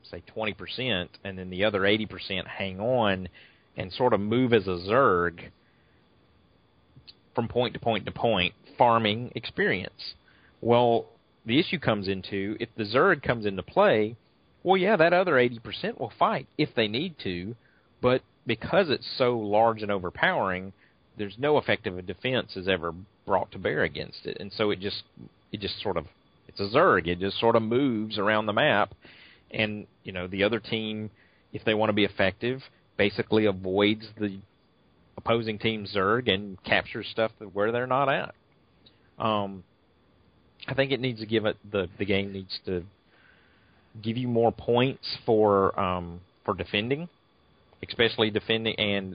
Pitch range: 95-115 Hz